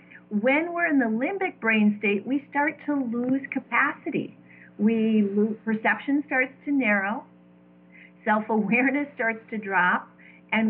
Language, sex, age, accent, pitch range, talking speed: English, female, 40-59, American, 180-230 Hz, 130 wpm